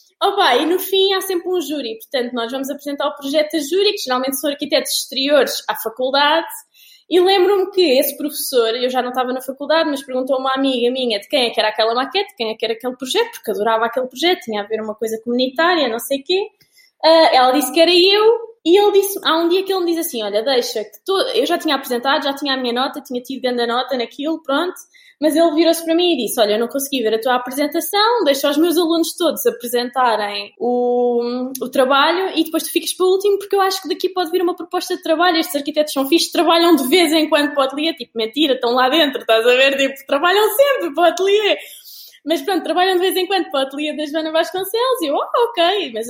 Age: 20-39